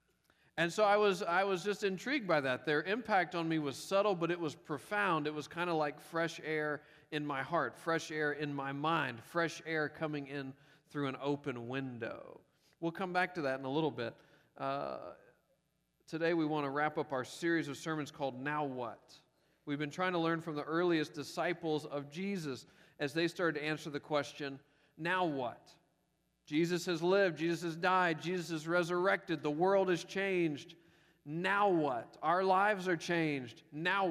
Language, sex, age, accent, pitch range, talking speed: English, male, 40-59, American, 150-185 Hz, 190 wpm